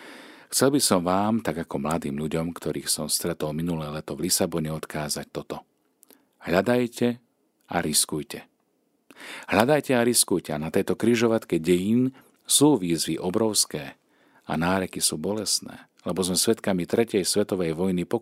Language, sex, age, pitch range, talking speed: Slovak, male, 40-59, 75-105 Hz, 135 wpm